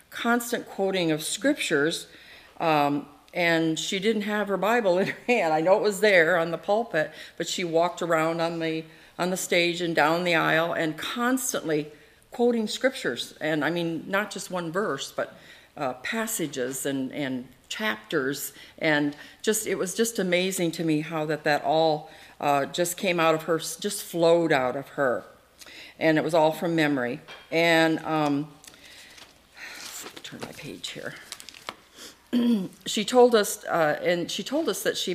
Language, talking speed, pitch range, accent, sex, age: English, 165 wpm, 150-180 Hz, American, female, 50-69